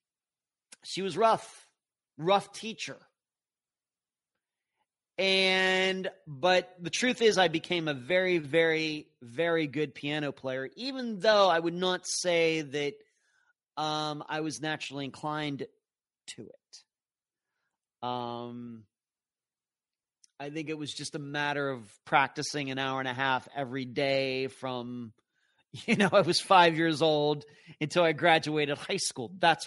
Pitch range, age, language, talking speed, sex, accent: 140-180 Hz, 30-49, English, 130 wpm, male, American